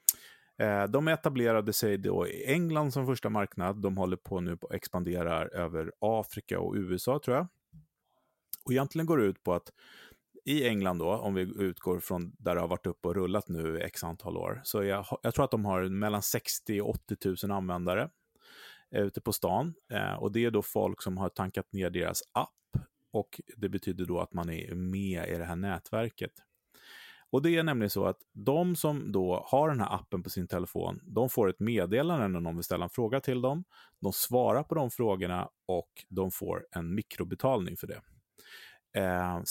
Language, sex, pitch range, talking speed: Swedish, male, 90-115 Hz, 190 wpm